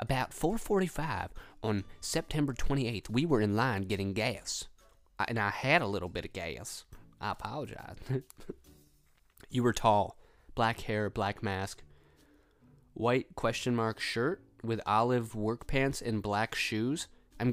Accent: American